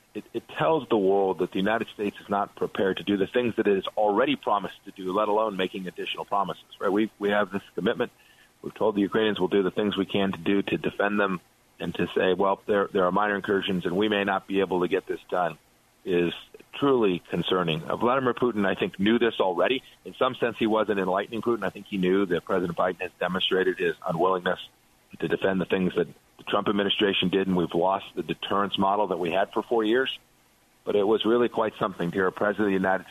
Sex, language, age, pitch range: male, English, 40-59, 90-110 Hz